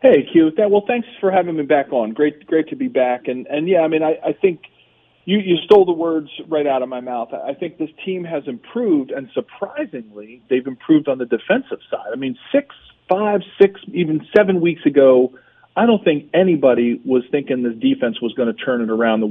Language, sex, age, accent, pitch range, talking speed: English, male, 40-59, American, 125-165 Hz, 220 wpm